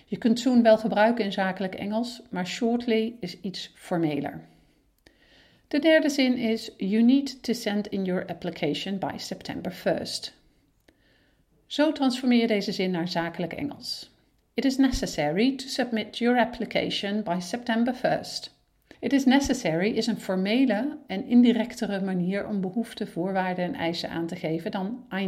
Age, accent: 50-69, Dutch